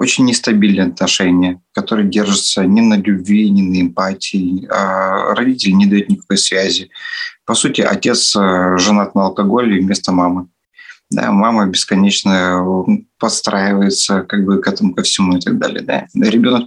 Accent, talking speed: native, 145 wpm